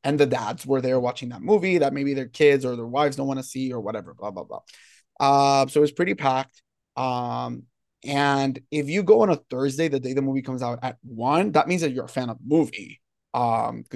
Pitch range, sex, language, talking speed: 125-150 Hz, male, English, 235 wpm